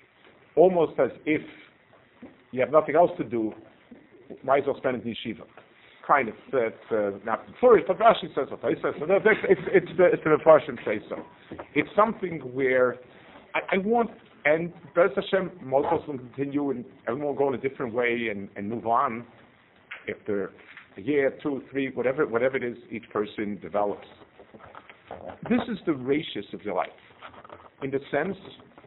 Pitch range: 115-170 Hz